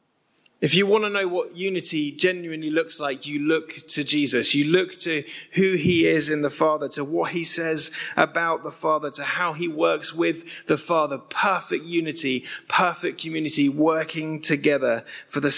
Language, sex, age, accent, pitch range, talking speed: English, male, 30-49, British, 160-225 Hz, 175 wpm